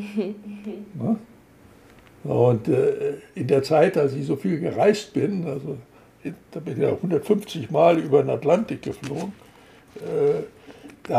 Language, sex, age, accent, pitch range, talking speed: German, male, 60-79, German, 150-205 Hz, 135 wpm